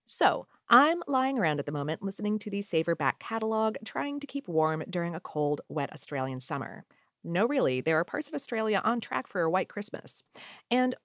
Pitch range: 170-255 Hz